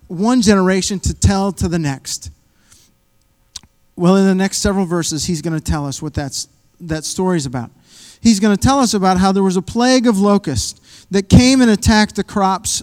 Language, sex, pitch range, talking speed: English, male, 175-230 Hz, 195 wpm